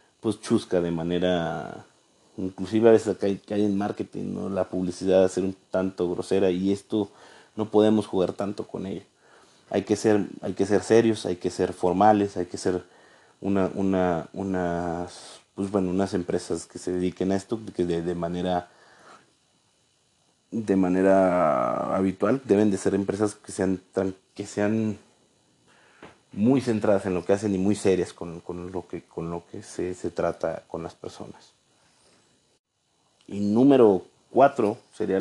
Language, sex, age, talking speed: Spanish, male, 30-49, 160 wpm